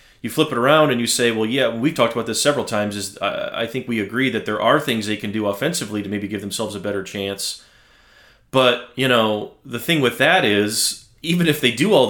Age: 30-49